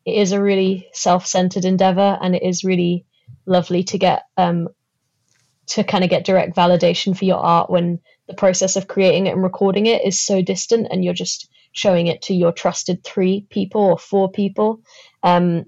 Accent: British